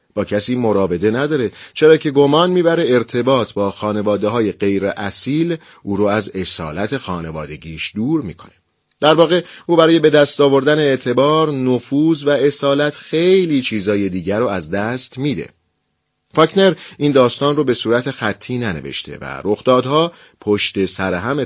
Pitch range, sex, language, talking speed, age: 100-145 Hz, male, Persian, 145 wpm, 40-59